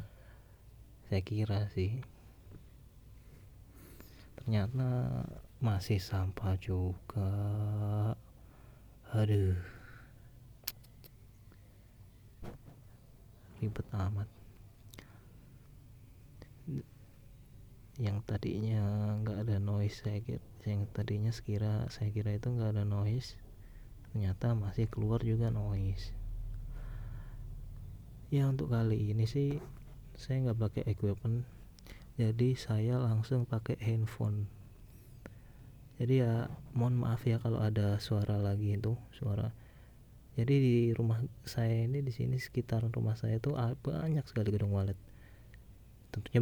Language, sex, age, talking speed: Indonesian, male, 20-39, 95 wpm